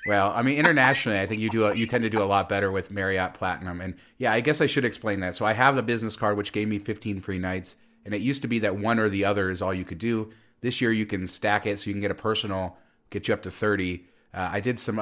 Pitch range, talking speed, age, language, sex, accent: 90-110 Hz, 295 wpm, 30-49, English, male, American